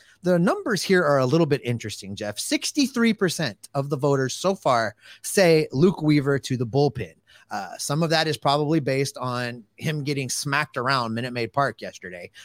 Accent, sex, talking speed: American, male, 185 wpm